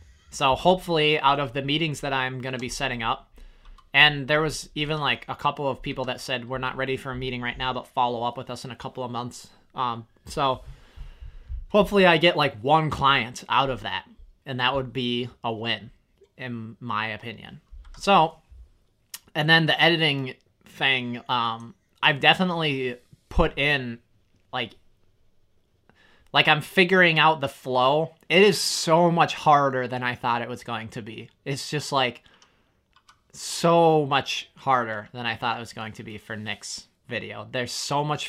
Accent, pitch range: American, 115-145 Hz